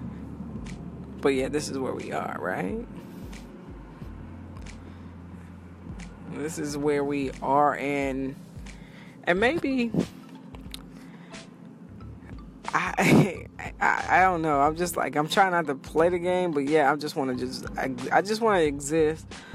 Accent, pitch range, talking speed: American, 135-160 Hz, 140 wpm